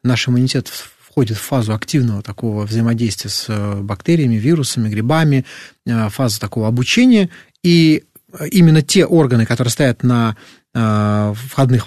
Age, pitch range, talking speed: 30-49, 115-155 Hz, 115 wpm